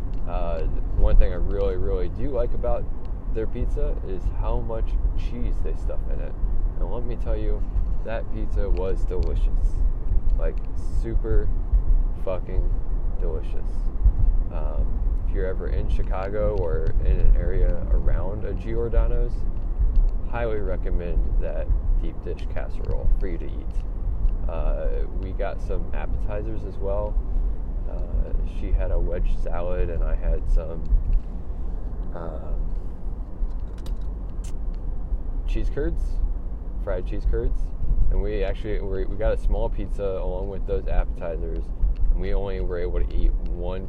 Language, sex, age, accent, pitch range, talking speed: English, male, 20-39, American, 85-95 Hz, 135 wpm